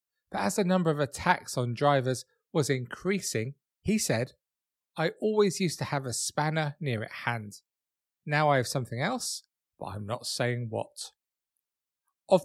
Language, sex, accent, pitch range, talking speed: English, male, British, 120-165 Hz, 160 wpm